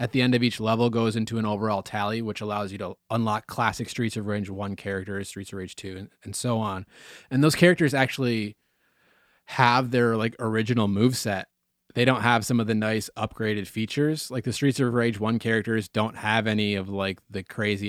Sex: male